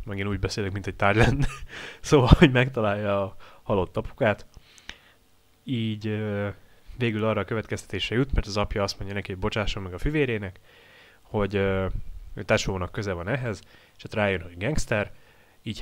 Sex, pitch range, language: male, 95-115 Hz, Hungarian